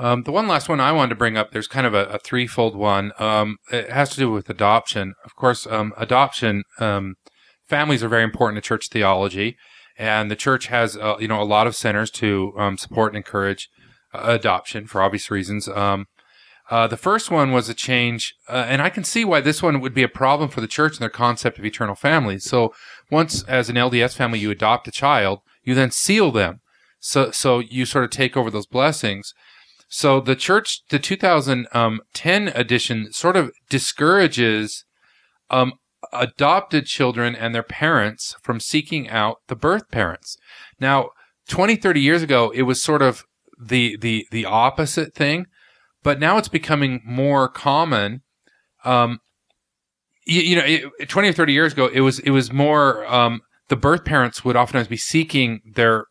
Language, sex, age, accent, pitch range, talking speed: English, male, 30-49, American, 110-140 Hz, 185 wpm